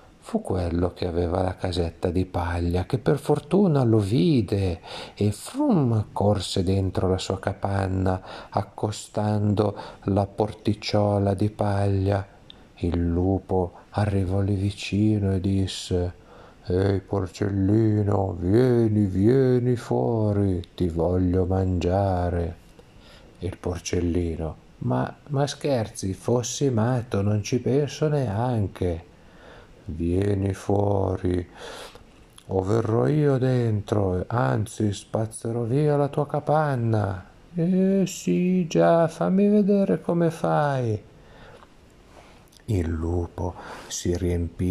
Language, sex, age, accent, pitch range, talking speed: Italian, male, 50-69, native, 95-125 Hz, 100 wpm